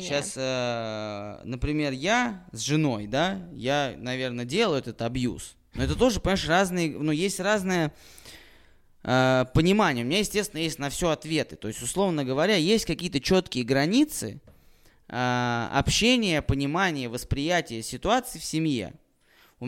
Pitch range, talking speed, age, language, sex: 125-175 Hz, 140 wpm, 20-39, Russian, male